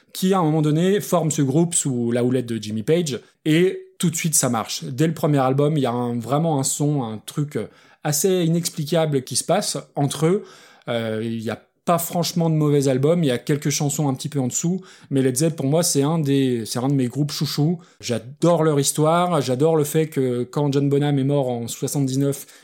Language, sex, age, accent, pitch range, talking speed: French, male, 30-49, French, 135-170 Hz, 230 wpm